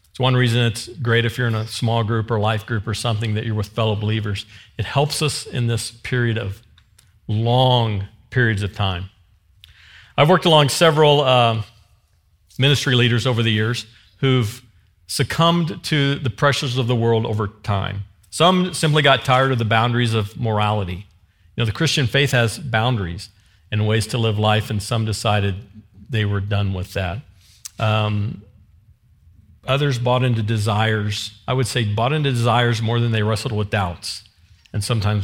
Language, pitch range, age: English, 100-130 Hz, 50-69